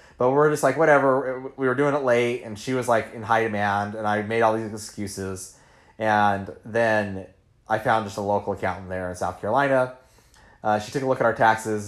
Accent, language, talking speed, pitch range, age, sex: American, English, 220 wpm, 100-125 Hz, 30-49, male